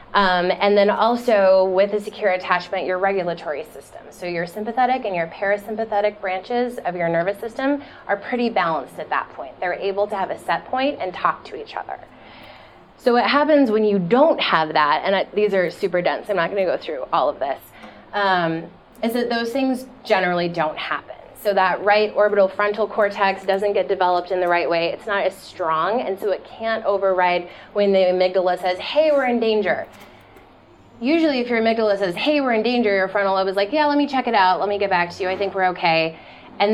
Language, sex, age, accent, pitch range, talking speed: English, female, 20-39, American, 185-230 Hz, 215 wpm